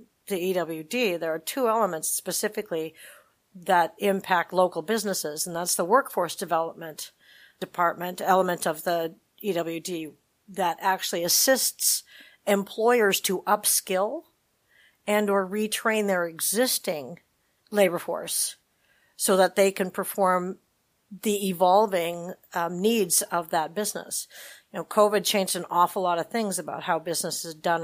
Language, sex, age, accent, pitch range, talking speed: English, female, 50-69, American, 165-200 Hz, 130 wpm